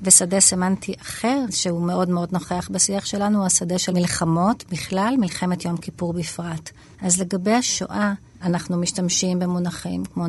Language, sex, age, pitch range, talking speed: Hebrew, female, 40-59, 170-190 Hz, 145 wpm